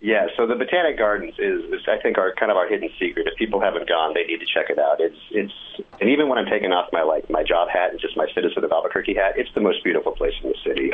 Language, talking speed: English, 290 wpm